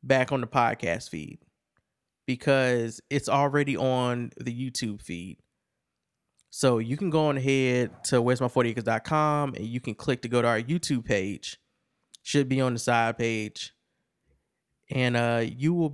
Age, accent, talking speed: 20-39, American, 160 wpm